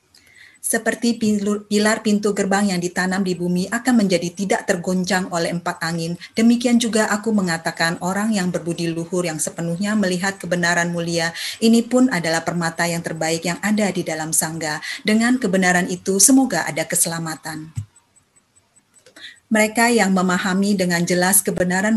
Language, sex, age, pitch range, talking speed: Indonesian, female, 30-49, 170-205 Hz, 140 wpm